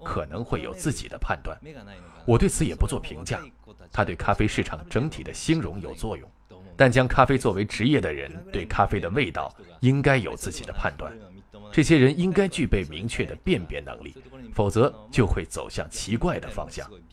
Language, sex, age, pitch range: Chinese, male, 20-39, 90-130 Hz